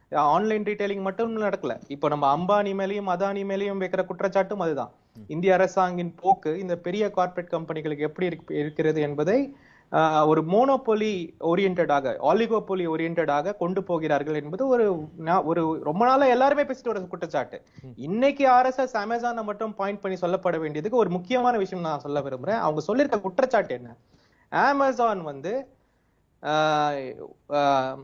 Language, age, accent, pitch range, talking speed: Tamil, 30-49, native, 175-220 Hz, 105 wpm